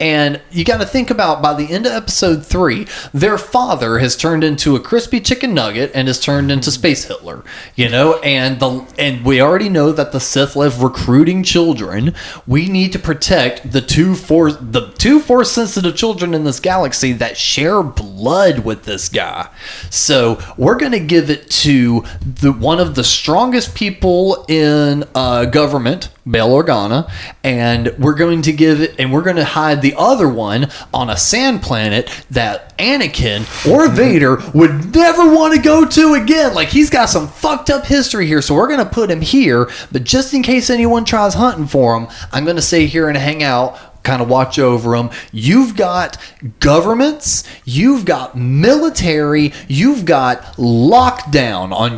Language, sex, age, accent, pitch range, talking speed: English, male, 20-39, American, 130-200 Hz, 180 wpm